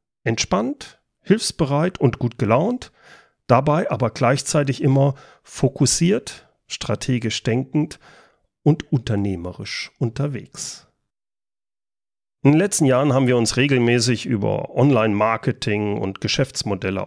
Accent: German